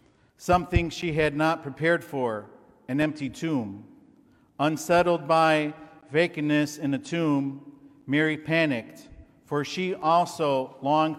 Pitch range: 145-165 Hz